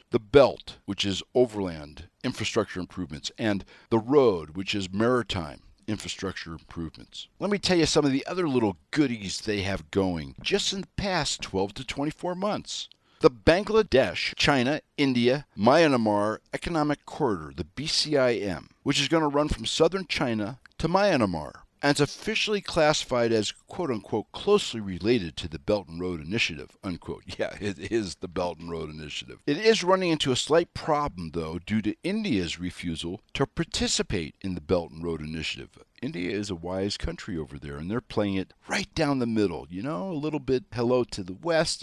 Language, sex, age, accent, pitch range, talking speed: English, male, 60-79, American, 90-145 Hz, 175 wpm